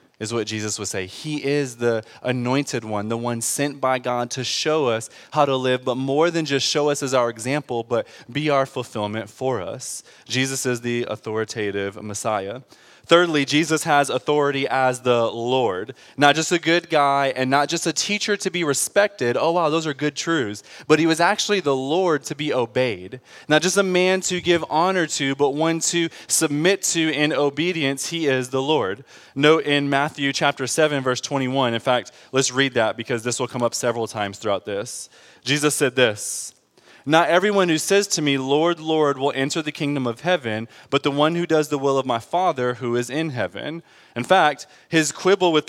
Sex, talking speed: male, 200 wpm